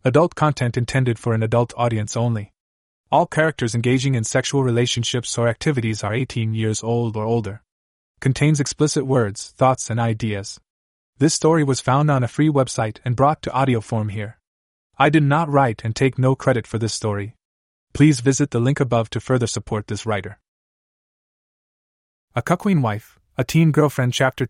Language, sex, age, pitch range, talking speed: English, male, 20-39, 110-135 Hz, 170 wpm